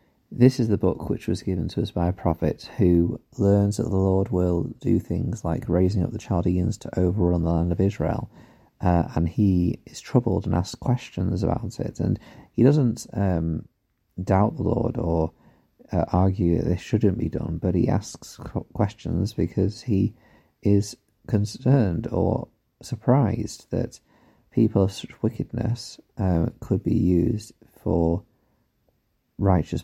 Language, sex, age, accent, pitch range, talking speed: English, male, 40-59, British, 85-115 Hz, 155 wpm